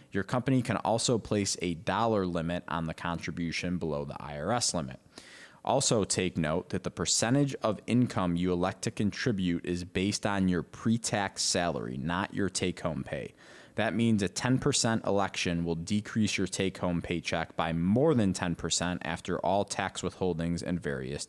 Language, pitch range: English, 85-105 Hz